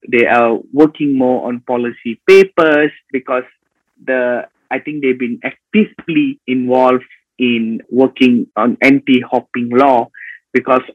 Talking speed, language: 115 wpm, English